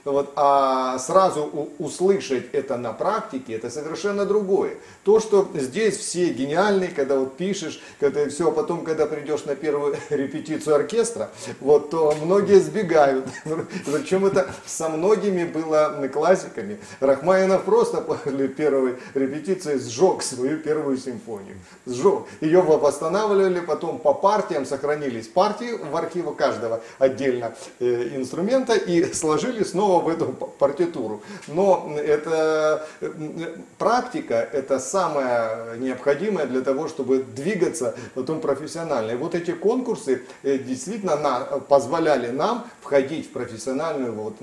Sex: male